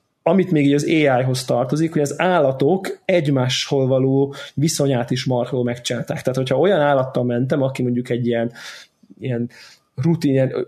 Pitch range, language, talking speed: 125-150 Hz, Hungarian, 150 wpm